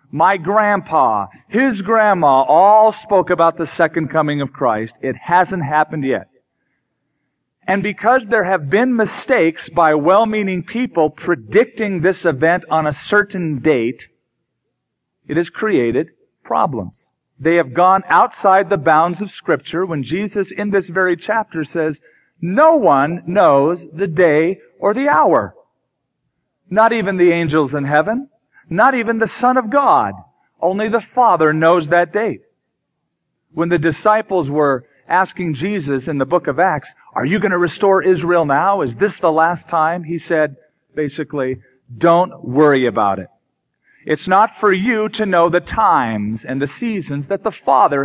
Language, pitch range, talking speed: English, 150-200 Hz, 150 wpm